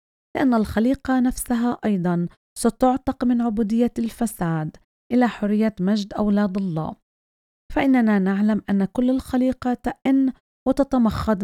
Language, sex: Arabic, female